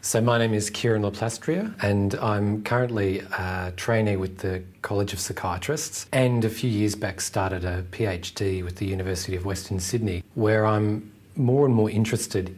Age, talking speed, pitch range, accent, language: 40-59, 170 wpm, 95-115 Hz, Australian, English